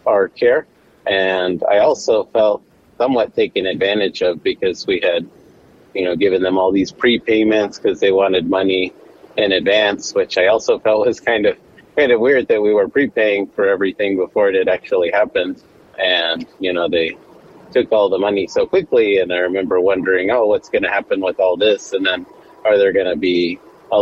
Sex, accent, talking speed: male, American, 190 wpm